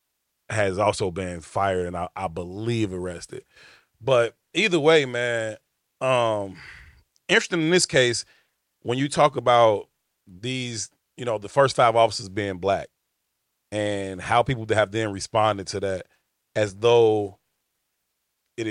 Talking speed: 135 wpm